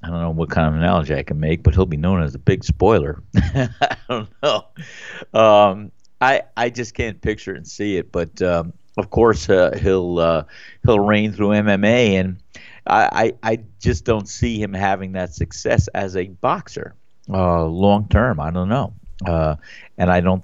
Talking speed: 195 wpm